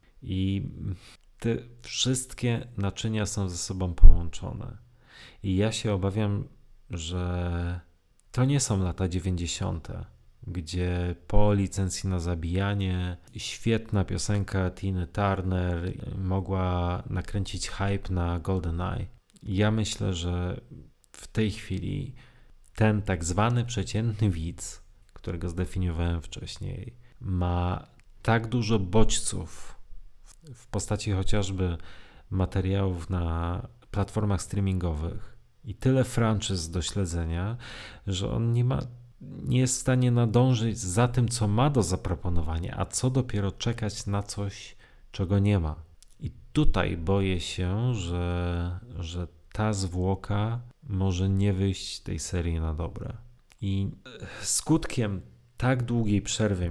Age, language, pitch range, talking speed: 30-49, Polish, 90-115 Hz, 115 wpm